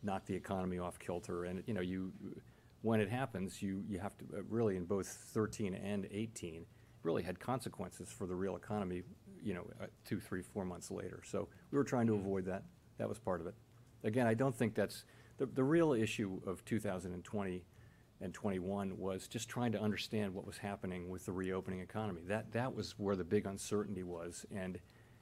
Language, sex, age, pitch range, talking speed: English, male, 50-69, 95-110 Hz, 200 wpm